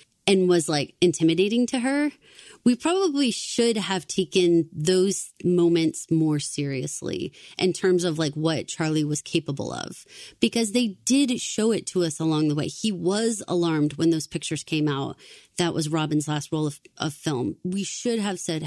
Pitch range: 155-190 Hz